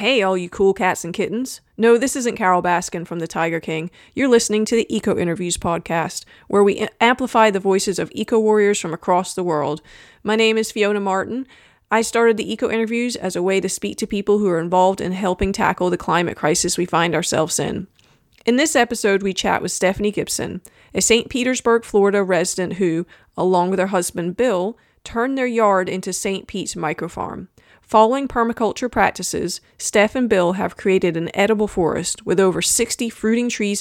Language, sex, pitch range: English, female, 180-220 Hz